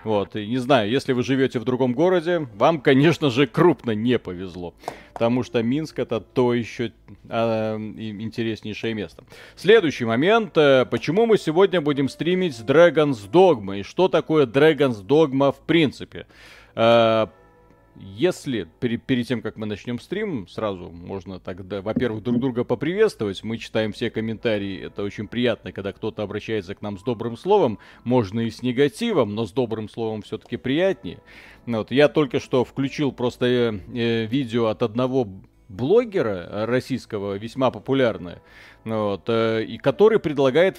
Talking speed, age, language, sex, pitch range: 140 wpm, 30-49, Russian, male, 110-145 Hz